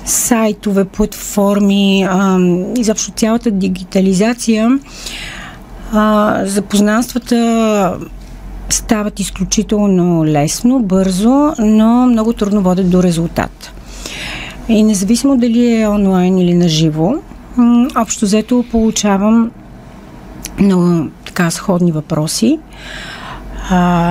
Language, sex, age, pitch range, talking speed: Bulgarian, female, 40-59, 185-230 Hz, 75 wpm